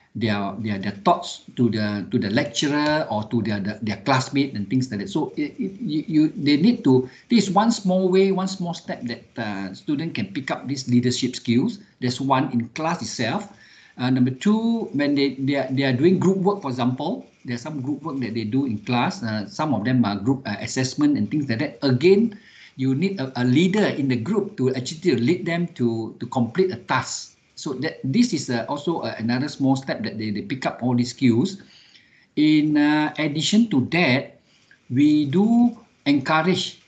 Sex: male